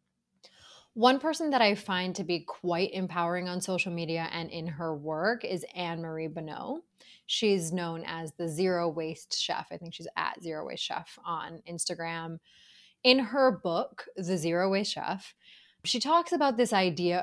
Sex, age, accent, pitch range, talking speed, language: female, 20-39, American, 165-215 Hz, 165 wpm, English